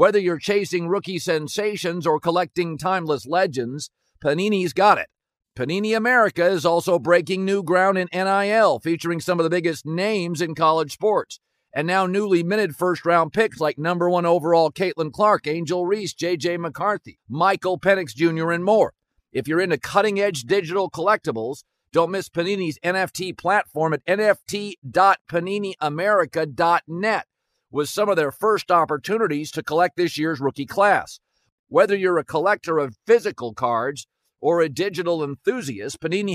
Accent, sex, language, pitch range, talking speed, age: American, male, English, 160-195 Hz, 150 wpm, 50-69